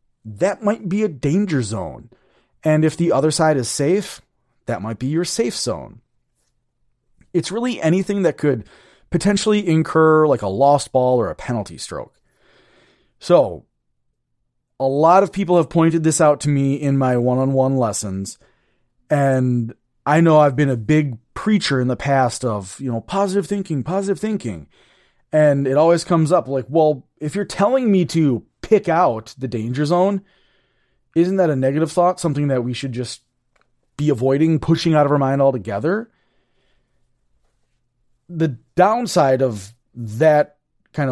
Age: 30-49